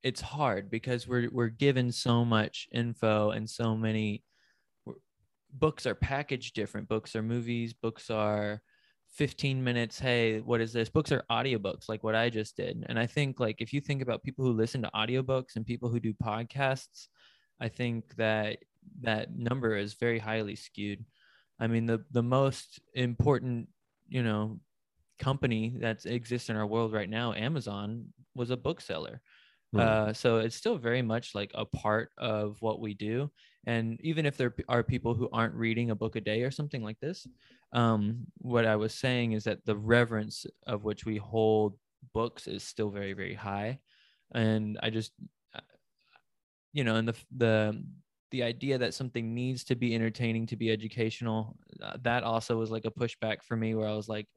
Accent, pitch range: American, 110-125 Hz